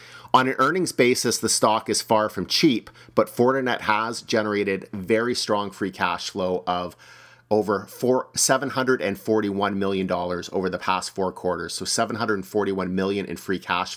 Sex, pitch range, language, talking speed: male, 95-115 Hz, English, 145 wpm